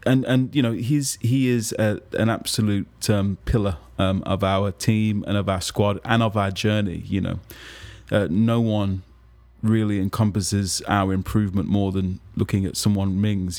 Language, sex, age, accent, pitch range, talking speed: English, male, 20-39, British, 100-110 Hz, 170 wpm